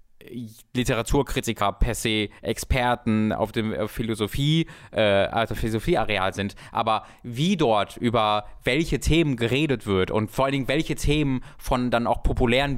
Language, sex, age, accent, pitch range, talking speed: German, male, 20-39, German, 105-135 Hz, 140 wpm